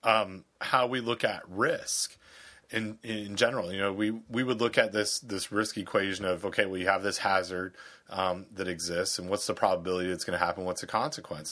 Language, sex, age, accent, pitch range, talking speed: English, male, 30-49, American, 95-115 Hz, 215 wpm